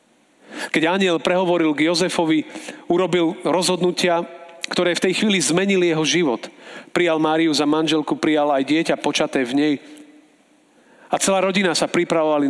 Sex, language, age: male, Slovak, 40-59